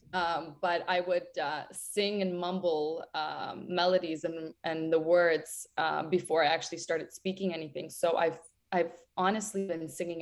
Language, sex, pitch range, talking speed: English, female, 165-190 Hz, 160 wpm